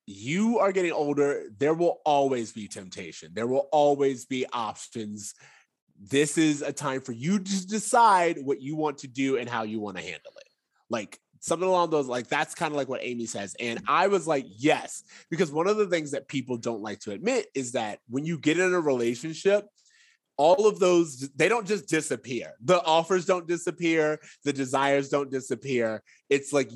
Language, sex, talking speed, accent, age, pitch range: English, male, 195 wpm, American, 20-39, 125-170 Hz